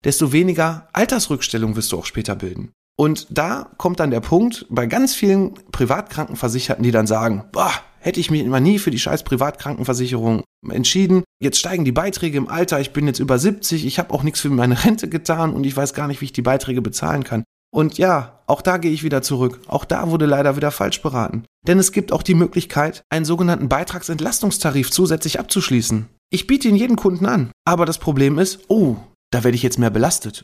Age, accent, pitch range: 30-49, German, 125-180 Hz